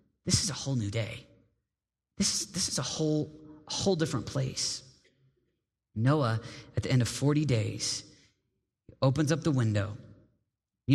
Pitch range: 110-140 Hz